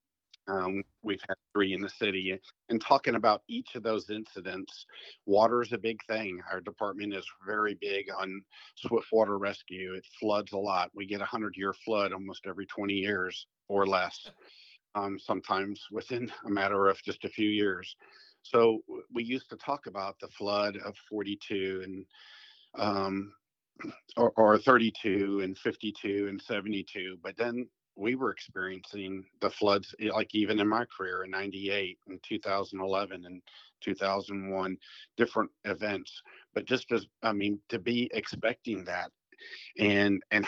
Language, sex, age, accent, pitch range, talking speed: English, male, 50-69, American, 95-110 Hz, 155 wpm